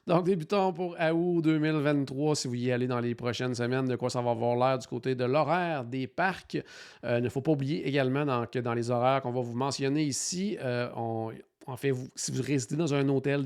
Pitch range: 120-155 Hz